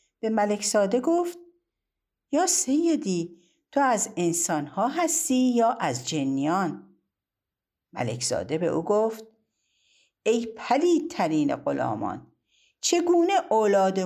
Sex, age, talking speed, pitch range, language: female, 50-69, 105 wpm, 165-265 Hz, Persian